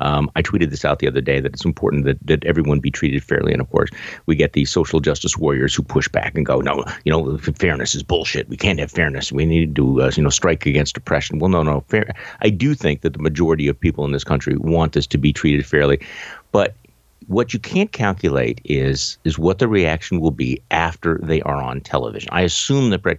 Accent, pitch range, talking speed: American, 75-95 Hz, 240 wpm